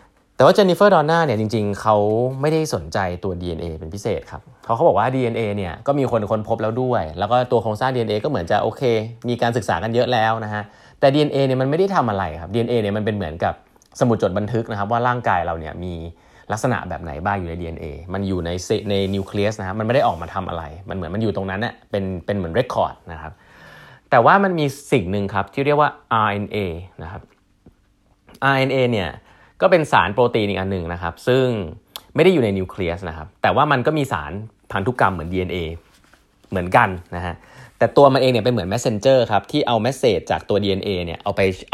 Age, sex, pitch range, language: 20-39, male, 90-120 Hz, Thai